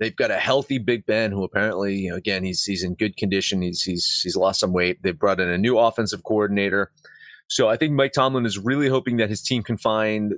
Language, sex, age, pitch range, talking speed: English, male, 30-49, 105-130 Hz, 245 wpm